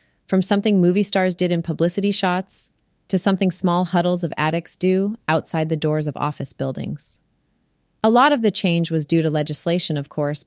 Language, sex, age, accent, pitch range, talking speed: English, female, 30-49, American, 155-190 Hz, 185 wpm